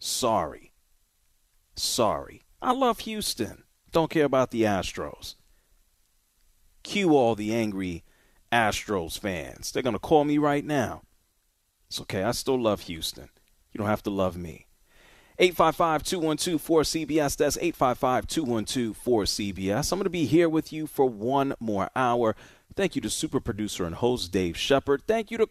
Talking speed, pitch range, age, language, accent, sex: 145 wpm, 95-145 Hz, 40-59, English, American, male